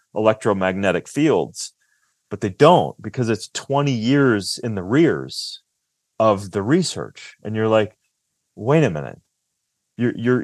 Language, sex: English, male